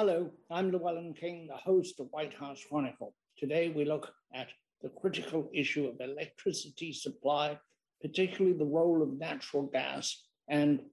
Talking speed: 150 wpm